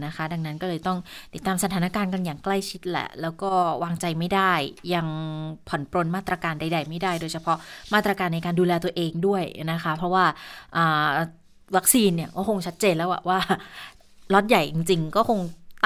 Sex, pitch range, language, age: female, 170-205 Hz, Thai, 20-39